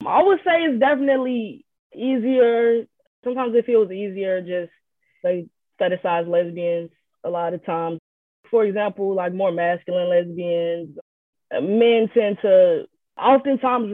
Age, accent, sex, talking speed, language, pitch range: 20-39, American, female, 120 wpm, English, 170-235 Hz